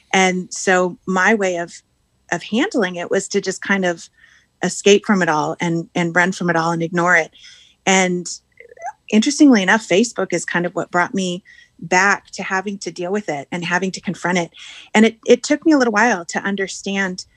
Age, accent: 30-49, American